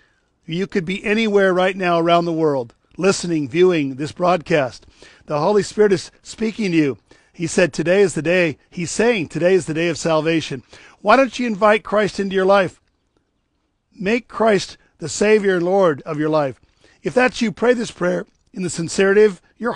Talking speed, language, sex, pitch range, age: 190 wpm, English, male, 150-195 Hz, 50-69